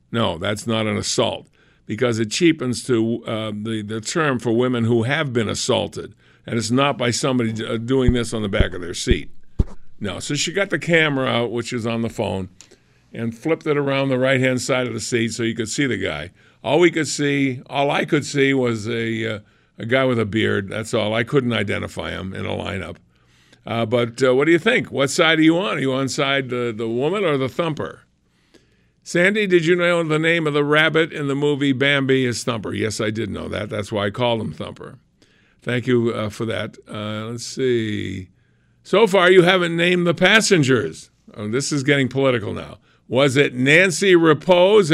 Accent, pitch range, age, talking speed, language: American, 110-160 Hz, 50-69, 210 wpm, English